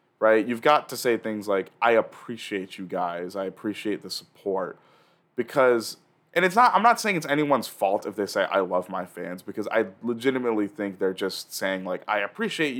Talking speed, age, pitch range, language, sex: 195 wpm, 20-39, 100-145 Hz, English, male